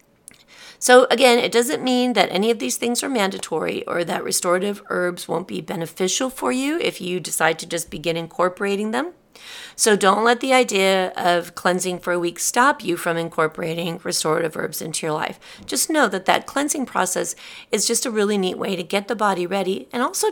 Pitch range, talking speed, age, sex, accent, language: 170-215 Hz, 200 wpm, 40-59, female, American, English